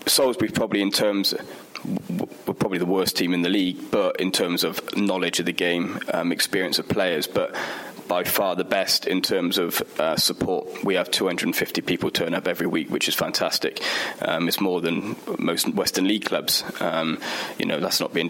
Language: English